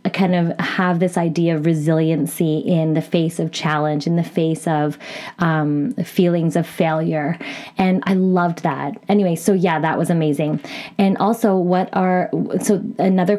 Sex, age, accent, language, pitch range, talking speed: female, 20-39, American, English, 160-190 Hz, 160 wpm